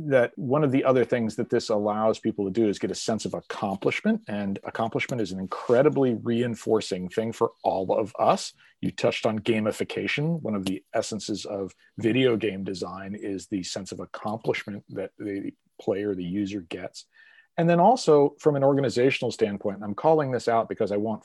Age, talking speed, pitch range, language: 40-59, 185 wpm, 100-135 Hz, English